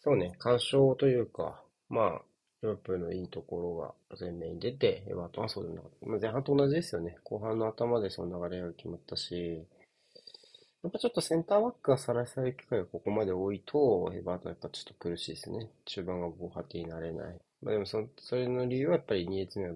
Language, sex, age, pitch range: Japanese, male, 30-49, 85-130 Hz